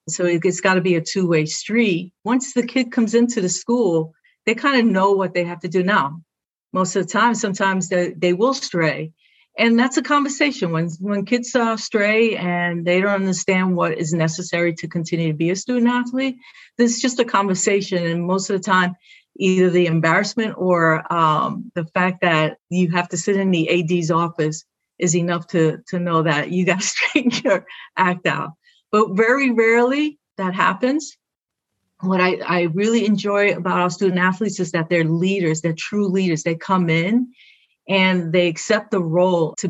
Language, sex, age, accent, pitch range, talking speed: English, female, 50-69, American, 170-210 Hz, 190 wpm